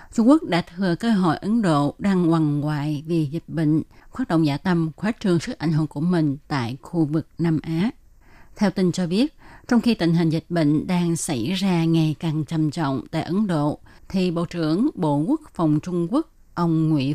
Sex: female